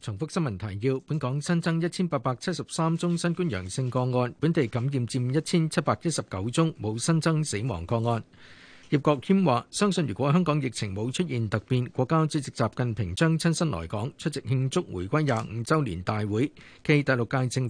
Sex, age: male, 50-69